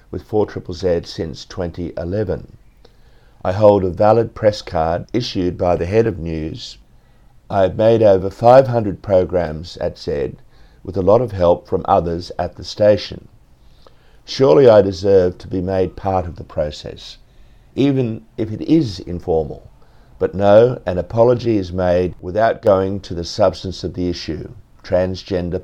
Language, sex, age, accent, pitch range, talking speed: English, male, 50-69, Australian, 90-110 Hz, 150 wpm